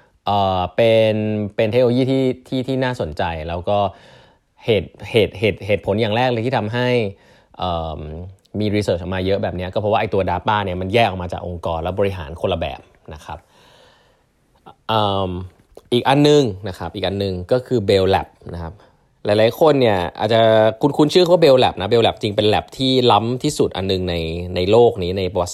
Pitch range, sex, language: 90-110 Hz, male, Thai